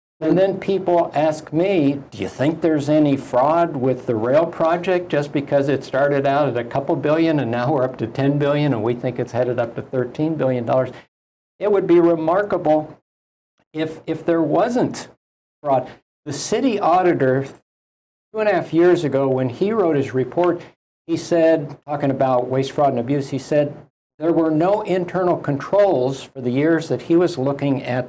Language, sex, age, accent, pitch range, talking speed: English, male, 60-79, American, 125-160 Hz, 185 wpm